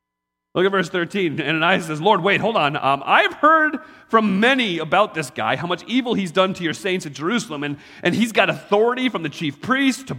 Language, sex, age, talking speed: English, male, 40-59, 230 wpm